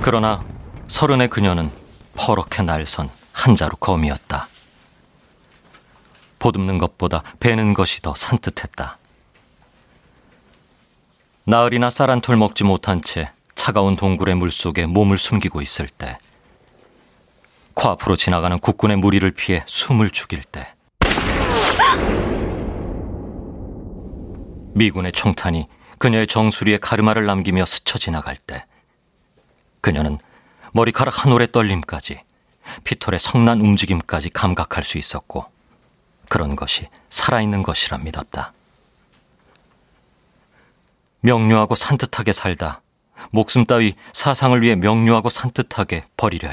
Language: Korean